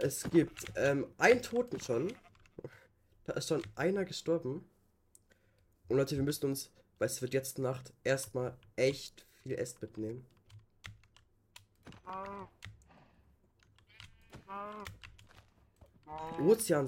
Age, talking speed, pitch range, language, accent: 20-39, 100 wpm, 100-145 Hz, German, German